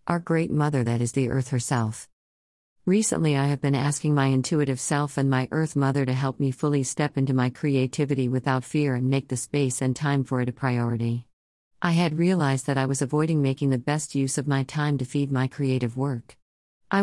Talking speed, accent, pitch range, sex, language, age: 210 wpm, American, 130-160 Hz, female, English, 50-69